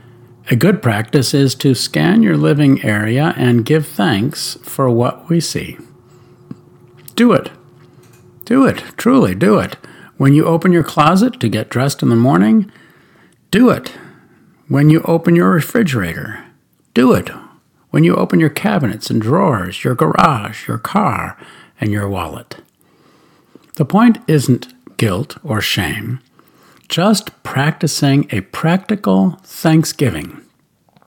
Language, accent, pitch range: English, American, 125-185 Hz